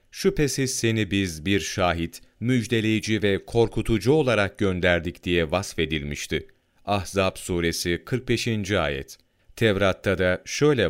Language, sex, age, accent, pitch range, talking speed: Turkish, male, 40-59, native, 90-120 Hz, 105 wpm